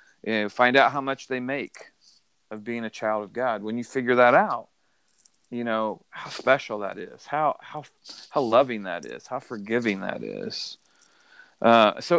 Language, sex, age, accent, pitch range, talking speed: English, male, 40-59, American, 115-145 Hz, 175 wpm